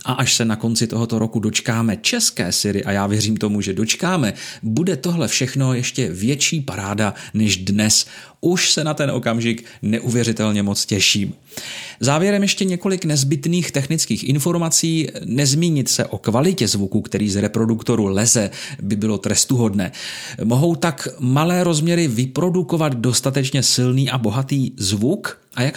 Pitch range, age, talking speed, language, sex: 105-140 Hz, 40-59, 145 wpm, Czech, male